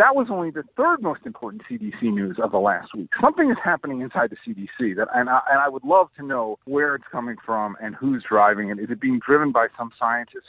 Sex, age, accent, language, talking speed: male, 40-59, American, English, 245 wpm